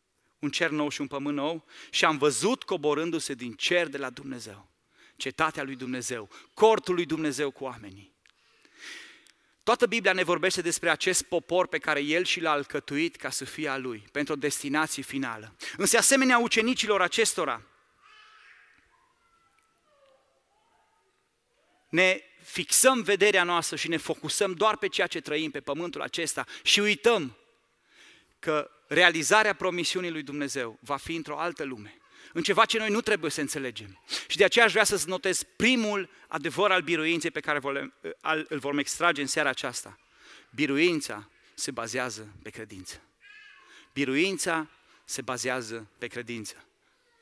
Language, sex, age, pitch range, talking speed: Romanian, male, 30-49, 145-220 Hz, 145 wpm